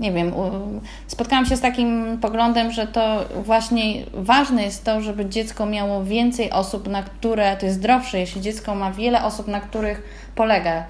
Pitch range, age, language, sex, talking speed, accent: 200-230 Hz, 20-39, Polish, female, 170 wpm, native